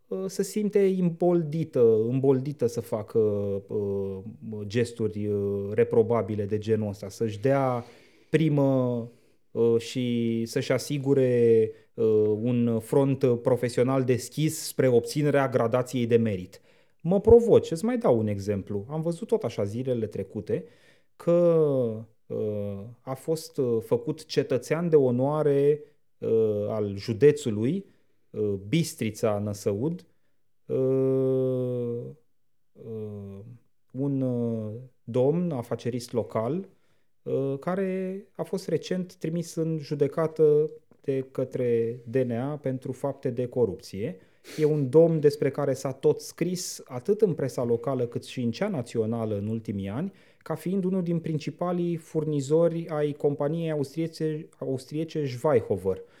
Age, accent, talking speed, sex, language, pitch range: 30-49, native, 105 wpm, male, Romanian, 115-155 Hz